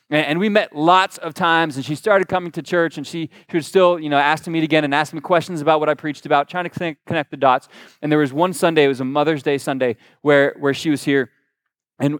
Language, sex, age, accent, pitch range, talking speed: English, male, 20-39, American, 135-165 Hz, 265 wpm